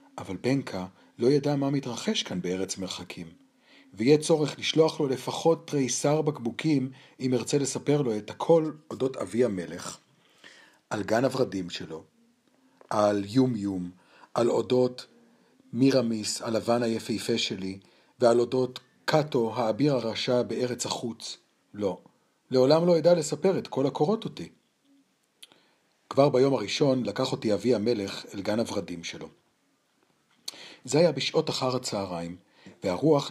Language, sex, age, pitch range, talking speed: Hebrew, male, 40-59, 105-150 Hz, 125 wpm